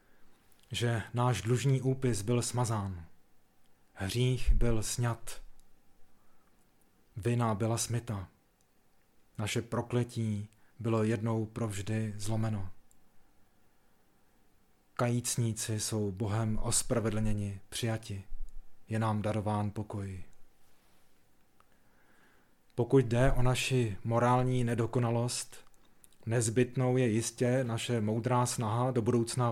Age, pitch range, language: 30-49, 110-125 Hz, Czech